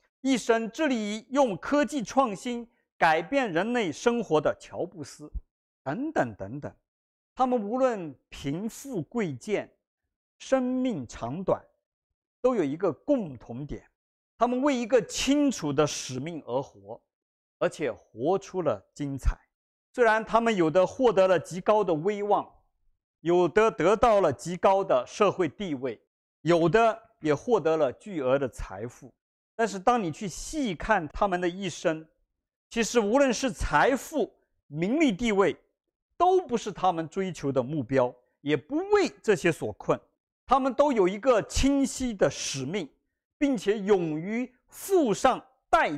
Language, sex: Chinese, male